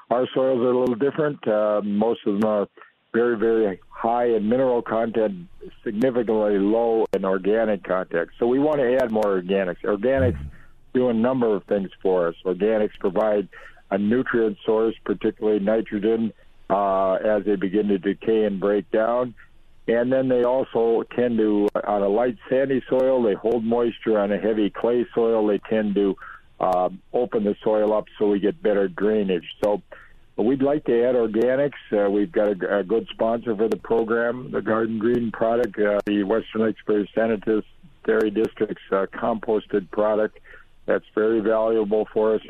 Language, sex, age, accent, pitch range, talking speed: English, male, 60-79, American, 105-120 Hz, 170 wpm